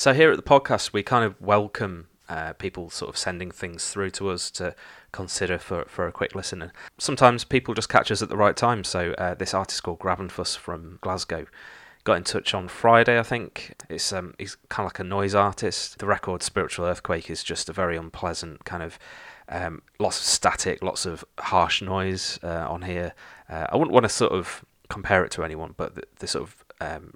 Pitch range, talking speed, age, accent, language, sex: 90-105 Hz, 215 wpm, 30-49, British, English, male